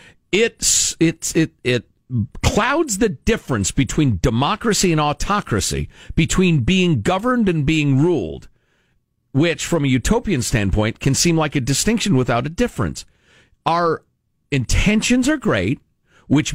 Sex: male